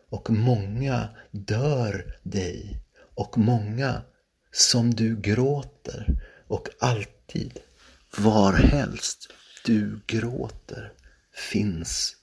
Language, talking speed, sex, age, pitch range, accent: Swedish, 75 wpm, male, 50-69, 95-115 Hz, native